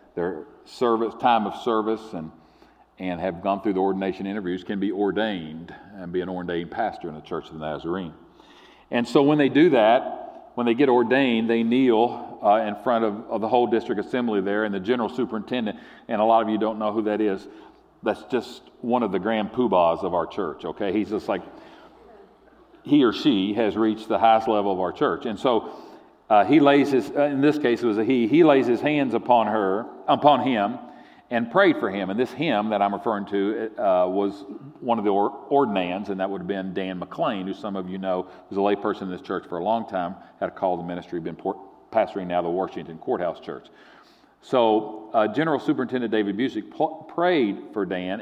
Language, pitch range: English, 95-125 Hz